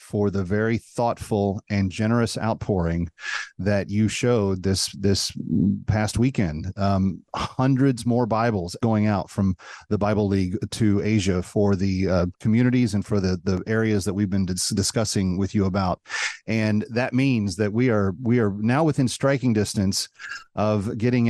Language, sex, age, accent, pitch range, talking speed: English, male, 40-59, American, 100-125 Hz, 160 wpm